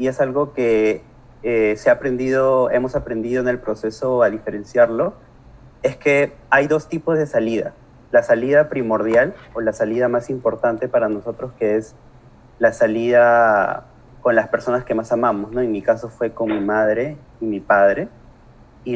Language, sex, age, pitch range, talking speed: Spanish, male, 30-49, 110-130 Hz, 170 wpm